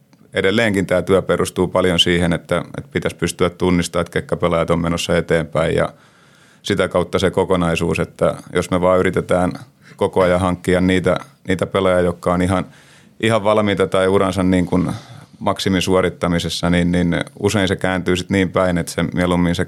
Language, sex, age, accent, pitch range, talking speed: Finnish, male, 30-49, native, 85-95 Hz, 165 wpm